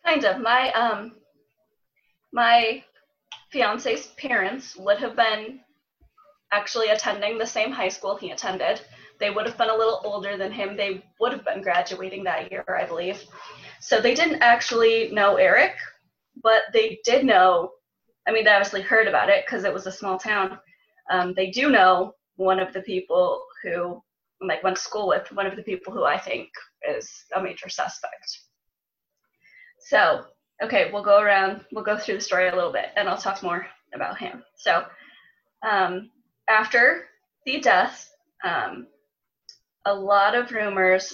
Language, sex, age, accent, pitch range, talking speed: English, female, 20-39, American, 190-245 Hz, 165 wpm